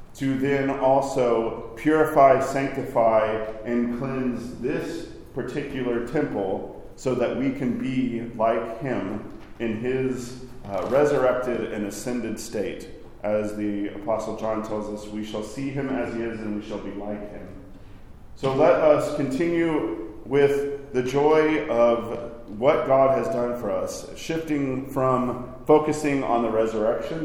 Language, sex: English, male